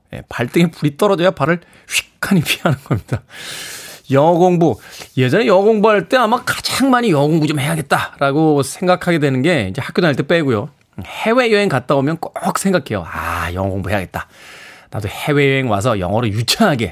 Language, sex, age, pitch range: Korean, male, 20-39, 125-180 Hz